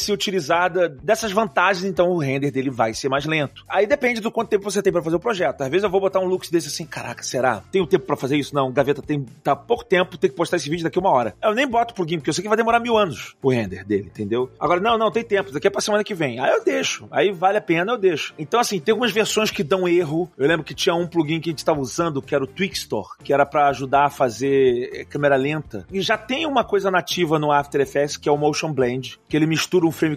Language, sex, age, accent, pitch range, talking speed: Portuguese, male, 30-49, Brazilian, 145-195 Hz, 285 wpm